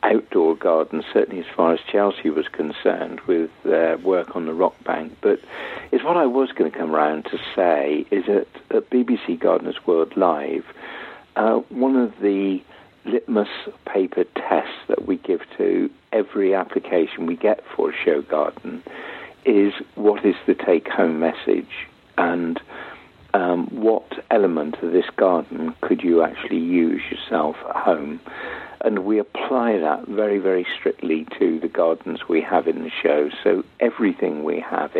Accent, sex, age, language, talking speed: British, male, 50-69, English, 160 wpm